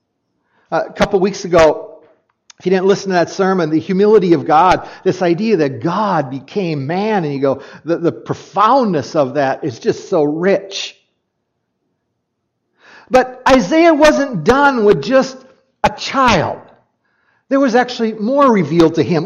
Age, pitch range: 50-69, 165-220 Hz